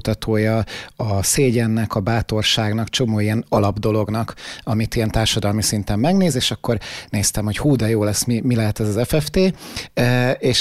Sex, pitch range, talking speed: male, 110-130 Hz, 160 wpm